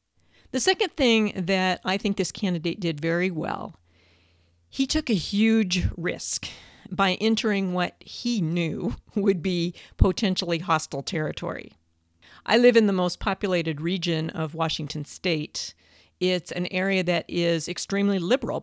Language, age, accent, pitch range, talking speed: English, 50-69, American, 170-215 Hz, 140 wpm